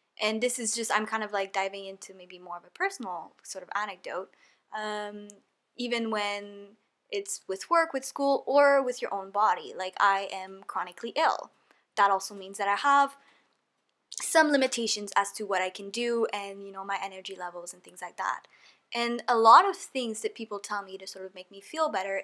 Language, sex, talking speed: English, female, 205 wpm